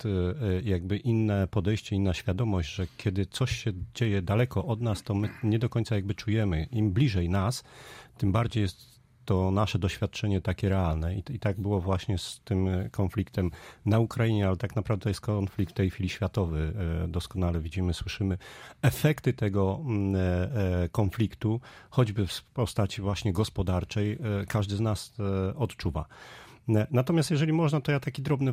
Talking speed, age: 150 wpm, 40-59